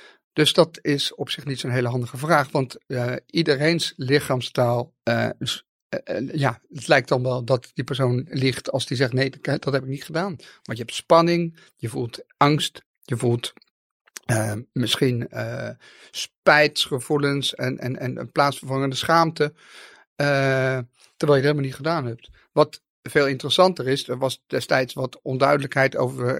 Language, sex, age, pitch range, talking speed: Dutch, male, 50-69, 125-160 Hz, 165 wpm